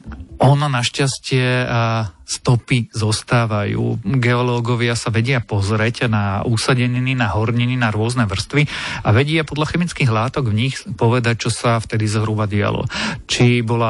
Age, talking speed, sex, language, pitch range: 40-59, 130 wpm, male, Slovak, 110-130 Hz